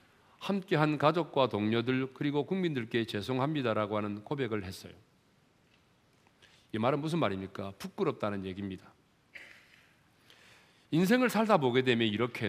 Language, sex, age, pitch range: Korean, male, 40-59, 105-165 Hz